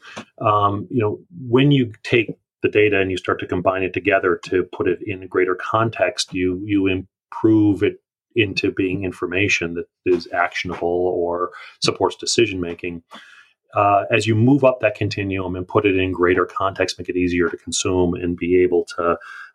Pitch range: 90-135 Hz